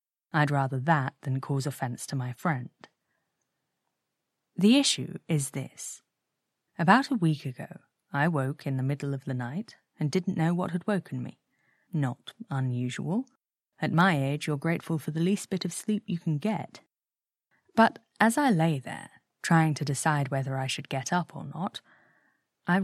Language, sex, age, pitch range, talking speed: English, female, 30-49, 145-190 Hz, 170 wpm